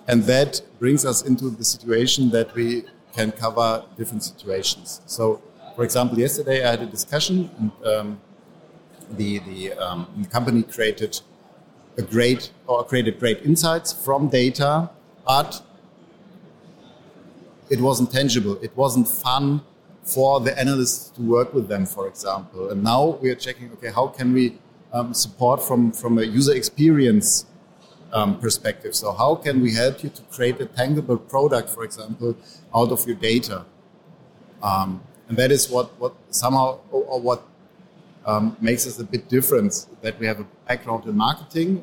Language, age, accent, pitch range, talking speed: English, 50-69, German, 115-135 Hz, 160 wpm